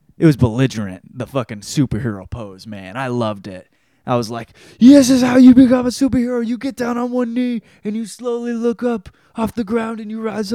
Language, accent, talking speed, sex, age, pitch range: English, American, 215 wpm, male, 20-39, 110-165 Hz